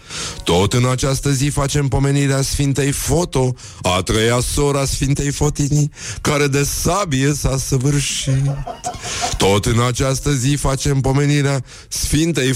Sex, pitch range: male, 120-140 Hz